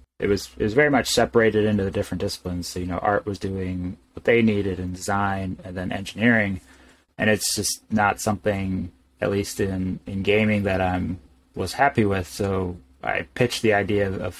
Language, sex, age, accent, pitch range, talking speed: English, male, 30-49, American, 90-110 Hz, 190 wpm